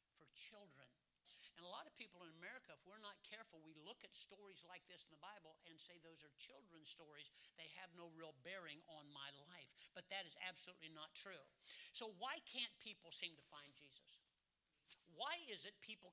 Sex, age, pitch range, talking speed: male, 60-79, 165-225 Hz, 200 wpm